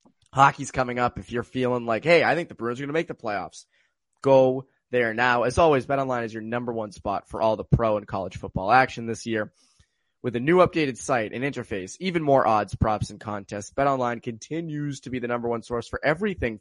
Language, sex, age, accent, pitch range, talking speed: English, male, 20-39, American, 110-140 Hz, 230 wpm